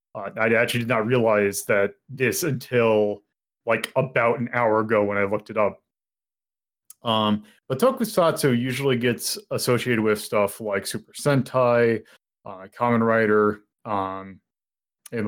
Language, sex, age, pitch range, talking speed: English, male, 30-49, 105-150 Hz, 140 wpm